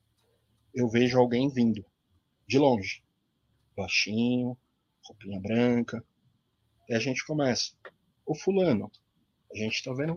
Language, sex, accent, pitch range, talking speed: Portuguese, male, Brazilian, 110-155 Hz, 110 wpm